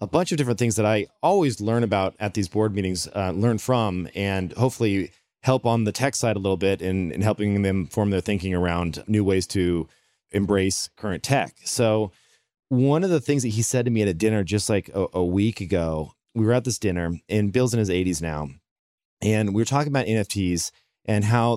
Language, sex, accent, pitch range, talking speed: English, male, American, 95-125 Hz, 215 wpm